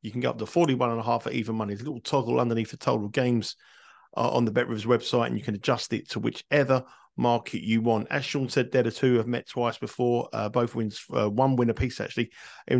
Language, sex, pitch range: English, male, 115-135 Hz